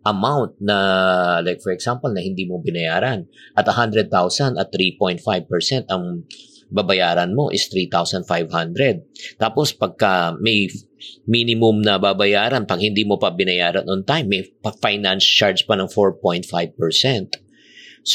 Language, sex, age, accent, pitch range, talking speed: Filipino, male, 50-69, native, 90-125 Hz, 120 wpm